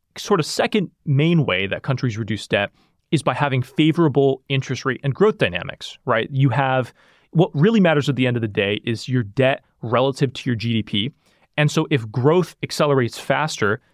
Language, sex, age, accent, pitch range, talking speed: English, male, 30-49, American, 130-175 Hz, 185 wpm